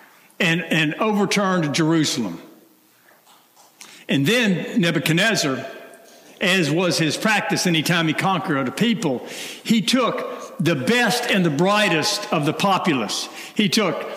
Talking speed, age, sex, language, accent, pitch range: 125 wpm, 60-79, male, English, American, 160-210 Hz